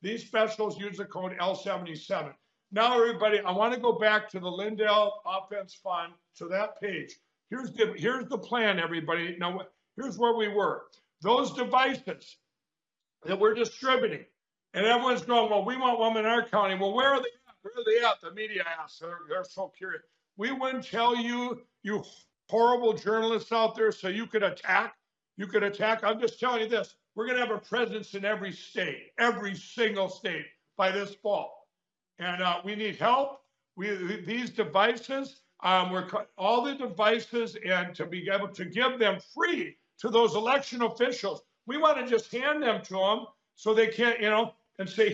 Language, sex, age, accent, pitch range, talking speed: English, male, 60-79, American, 195-235 Hz, 185 wpm